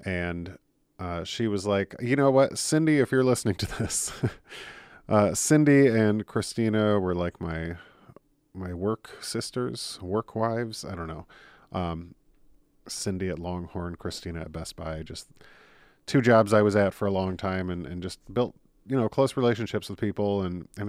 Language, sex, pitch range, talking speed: English, male, 90-115 Hz, 170 wpm